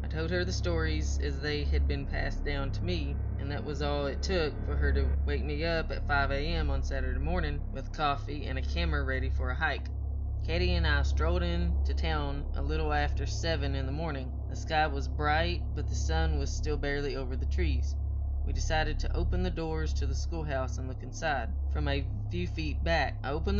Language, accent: English, American